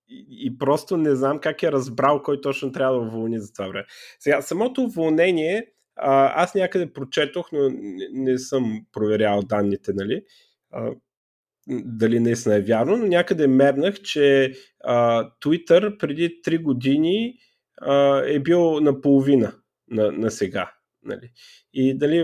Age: 30-49